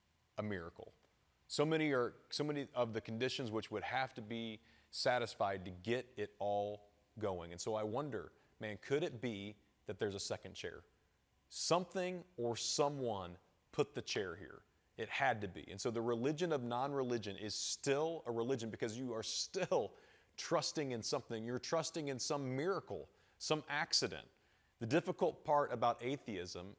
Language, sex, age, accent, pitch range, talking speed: English, male, 30-49, American, 105-140 Hz, 165 wpm